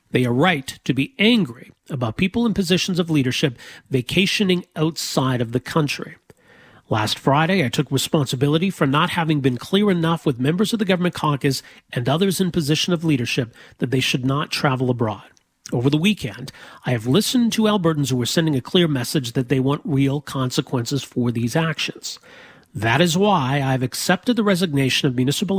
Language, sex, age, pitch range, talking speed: English, male, 40-59, 130-175 Hz, 180 wpm